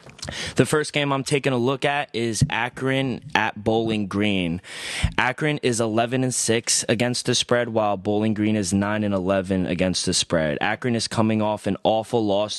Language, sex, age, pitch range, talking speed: English, male, 20-39, 95-115 Hz, 180 wpm